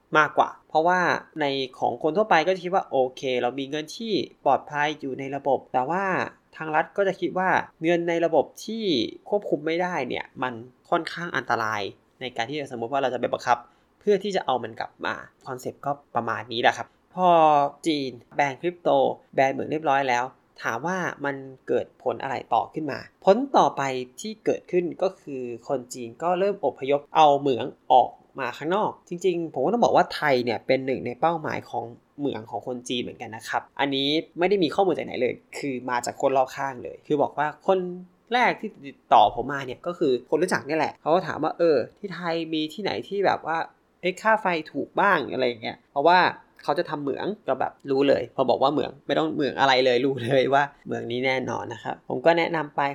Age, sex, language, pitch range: 20-39, male, Thai, 130-175 Hz